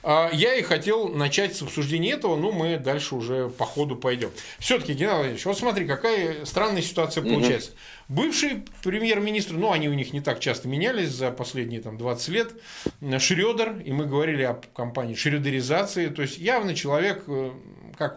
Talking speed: 165 wpm